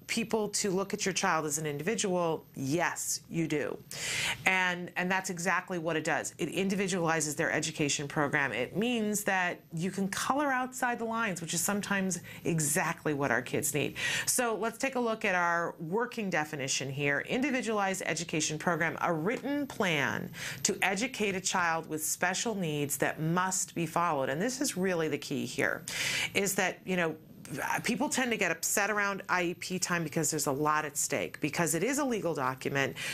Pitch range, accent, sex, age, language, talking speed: 150-200 Hz, American, female, 40-59, English, 180 wpm